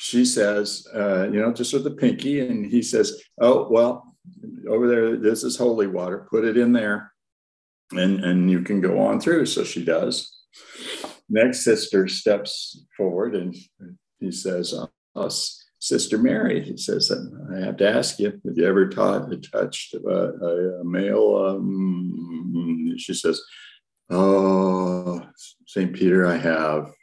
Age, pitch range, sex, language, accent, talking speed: 60-79, 90-140 Hz, male, English, American, 150 wpm